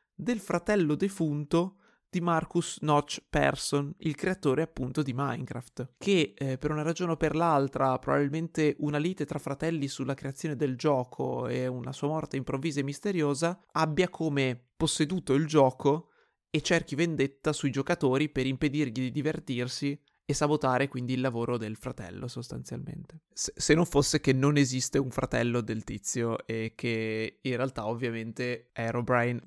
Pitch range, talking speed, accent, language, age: 130-155 Hz, 150 wpm, native, Italian, 20-39